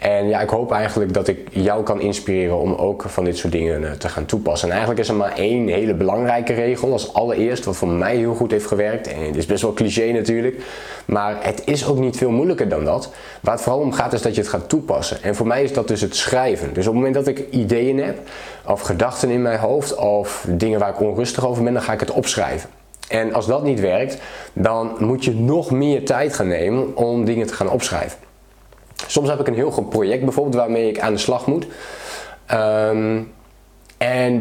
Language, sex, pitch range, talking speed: Dutch, male, 105-125 Hz, 225 wpm